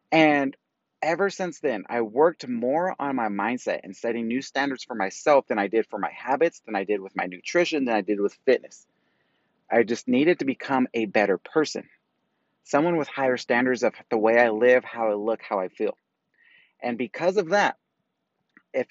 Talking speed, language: 195 wpm, English